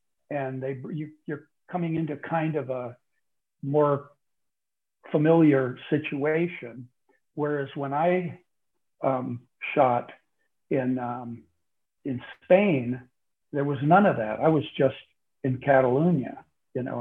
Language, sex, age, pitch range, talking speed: English, male, 60-79, 125-150 Hz, 115 wpm